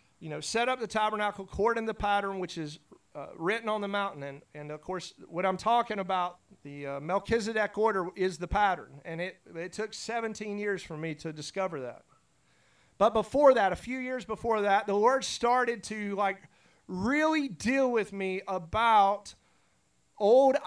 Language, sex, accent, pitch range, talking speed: English, male, American, 180-235 Hz, 175 wpm